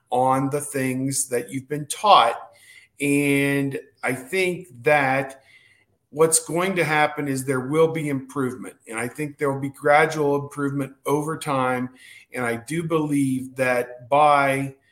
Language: English